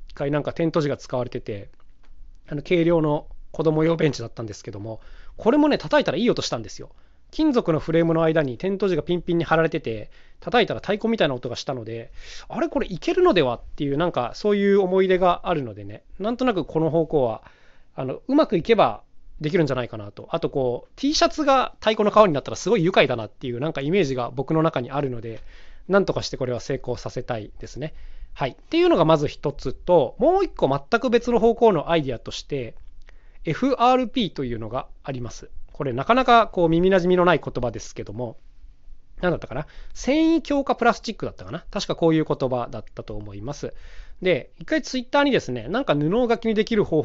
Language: Japanese